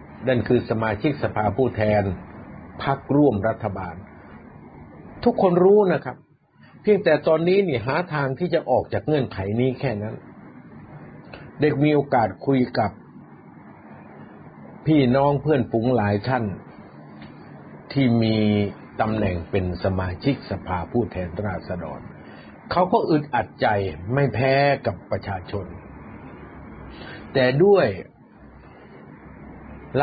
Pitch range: 100-135 Hz